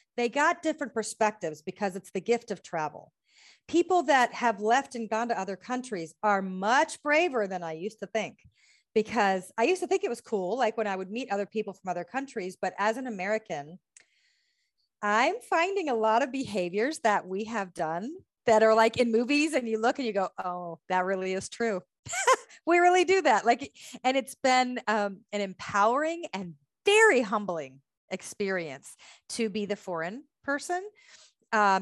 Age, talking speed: 40-59, 180 wpm